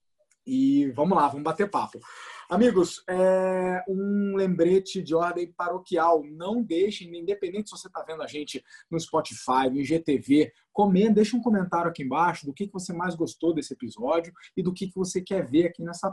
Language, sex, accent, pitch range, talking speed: Portuguese, male, Brazilian, 150-180 Hz, 165 wpm